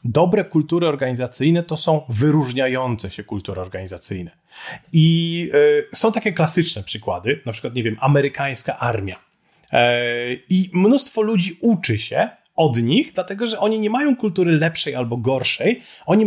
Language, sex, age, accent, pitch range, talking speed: Polish, male, 30-49, native, 125-180 Hz, 135 wpm